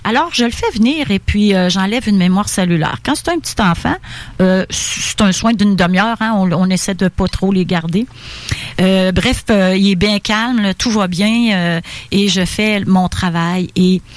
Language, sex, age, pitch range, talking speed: French, female, 40-59, 185-230 Hz, 215 wpm